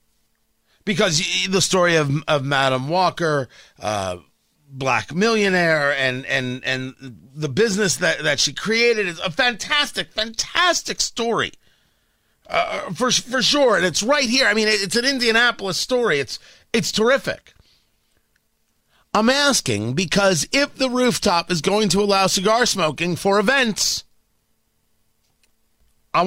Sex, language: male, English